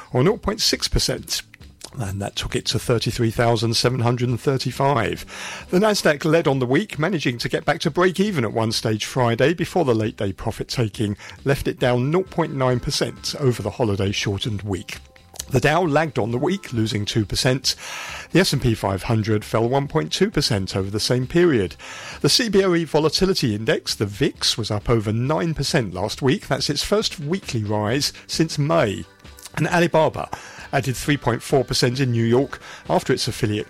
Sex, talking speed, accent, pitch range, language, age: male, 145 wpm, British, 110-150 Hz, English, 50-69